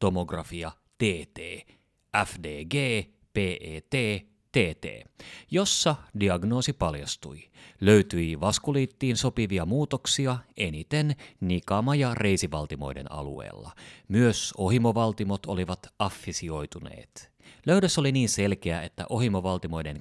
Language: Finnish